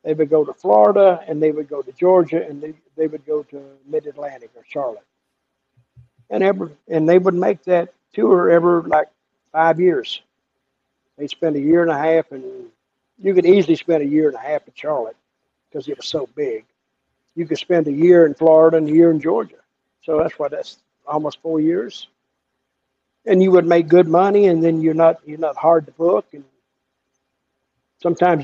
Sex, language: male, English